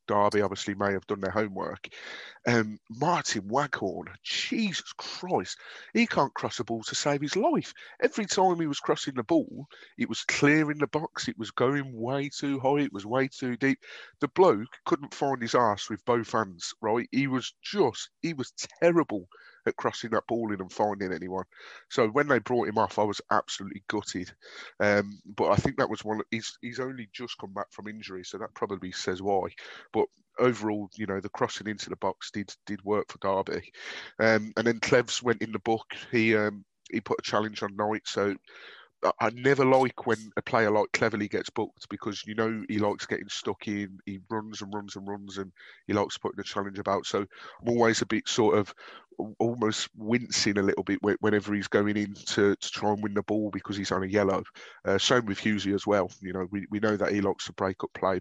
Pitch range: 100-120 Hz